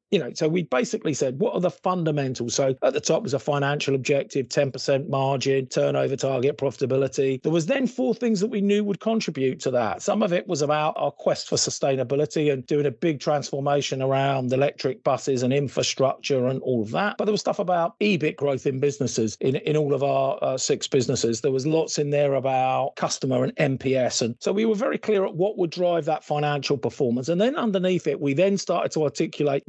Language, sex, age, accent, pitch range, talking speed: English, male, 40-59, British, 135-175 Hz, 215 wpm